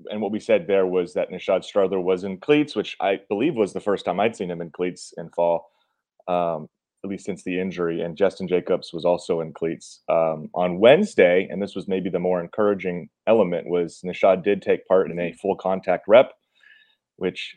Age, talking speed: 30-49, 210 wpm